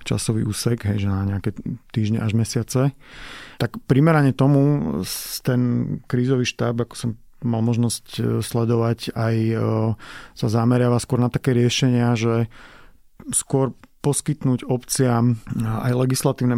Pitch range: 115-130 Hz